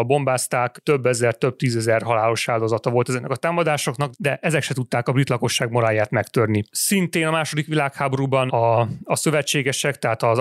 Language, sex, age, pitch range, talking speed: Hungarian, male, 30-49, 120-140 Hz, 165 wpm